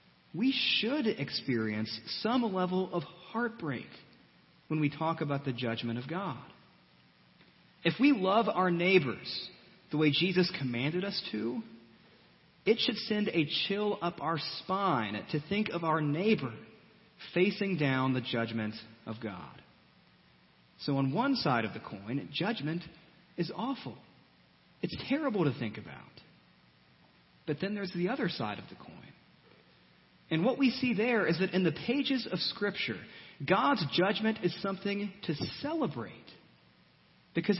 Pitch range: 140-205 Hz